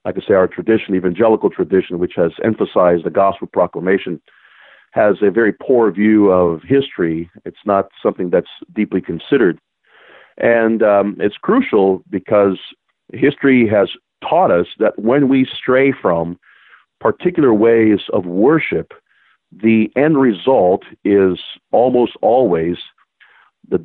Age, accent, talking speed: 50-69, American, 130 wpm